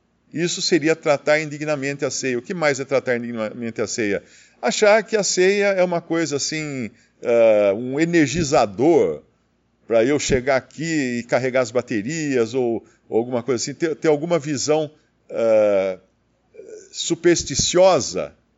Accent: Brazilian